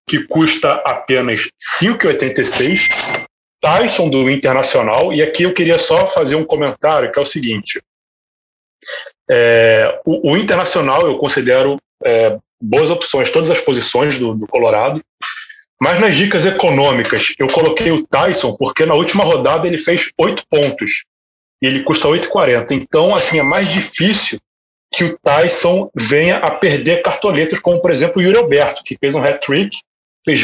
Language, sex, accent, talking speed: Portuguese, male, Brazilian, 155 wpm